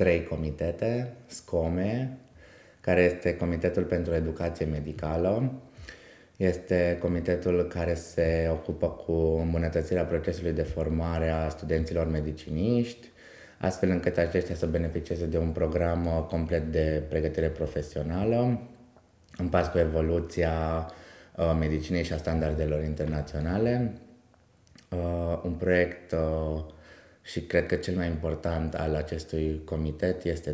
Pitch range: 80-95 Hz